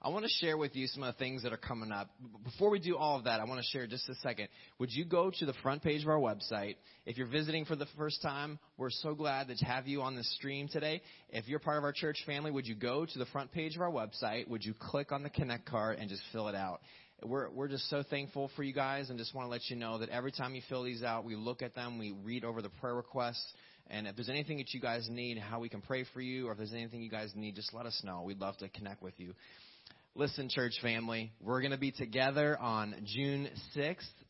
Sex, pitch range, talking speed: male, 120-150 Hz, 275 wpm